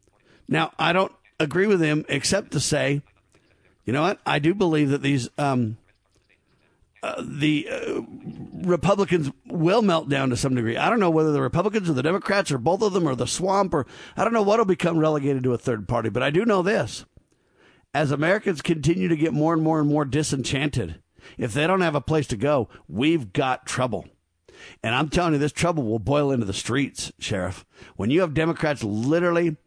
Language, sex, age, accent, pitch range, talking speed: English, male, 50-69, American, 135-165 Hz, 200 wpm